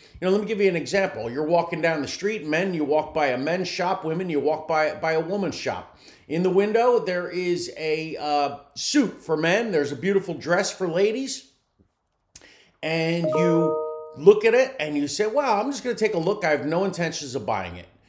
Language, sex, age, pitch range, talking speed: English, male, 40-59, 140-190 Hz, 215 wpm